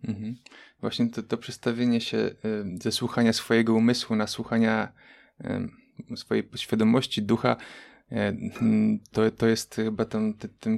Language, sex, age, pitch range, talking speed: Polish, male, 20-39, 105-115 Hz, 110 wpm